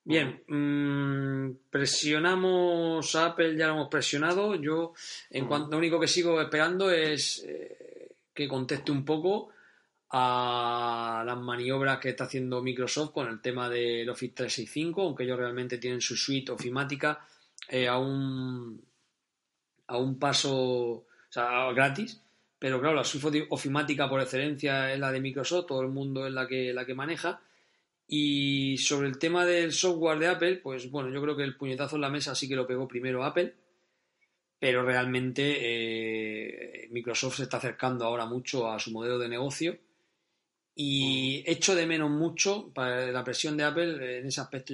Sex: male